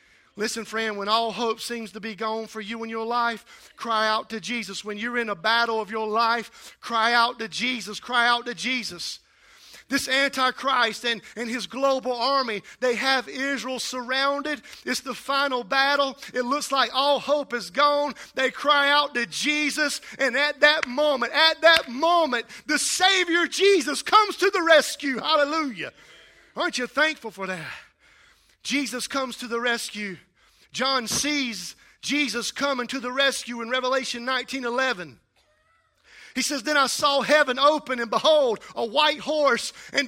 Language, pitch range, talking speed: English, 235-295 Hz, 165 wpm